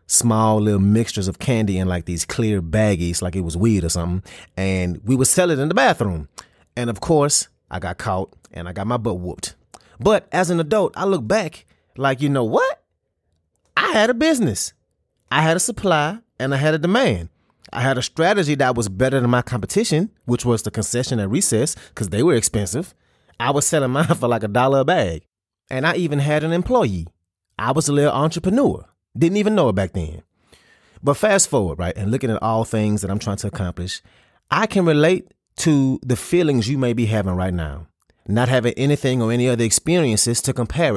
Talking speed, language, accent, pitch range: 210 wpm, English, American, 100-145 Hz